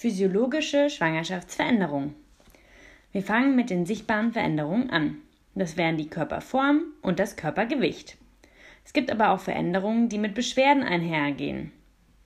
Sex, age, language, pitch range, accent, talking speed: female, 30-49, German, 180-265 Hz, German, 120 wpm